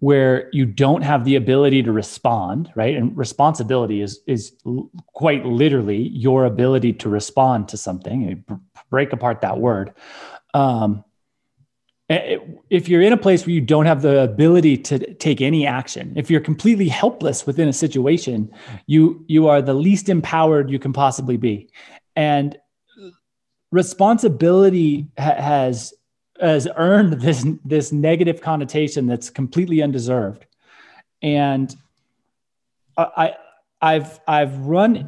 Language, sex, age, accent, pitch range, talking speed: English, male, 30-49, American, 125-155 Hz, 130 wpm